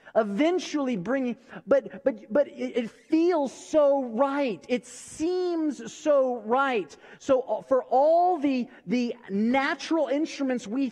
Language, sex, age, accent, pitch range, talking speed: English, male, 30-49, American, 185-255 Hz, 115 wpm